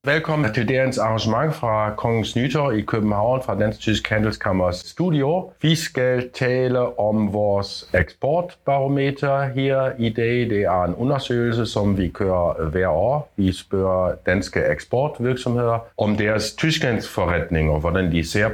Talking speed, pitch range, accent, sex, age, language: 140 wpm, 95-125 Hz, German, male, 50-69, Danish